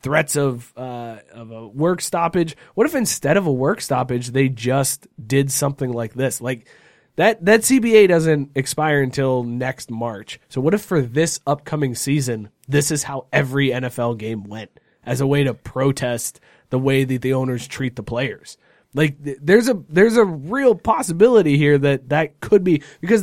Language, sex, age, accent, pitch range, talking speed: English, male, 20-39, American, 125-150 Hz, 180 wpm